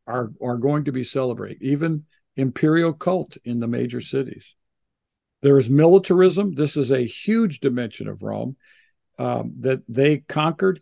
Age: 50-69